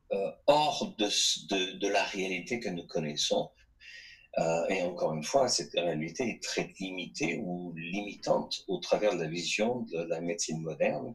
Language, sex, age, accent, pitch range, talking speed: French, male, 50-69, French, 85-135 Hz, 160 wpm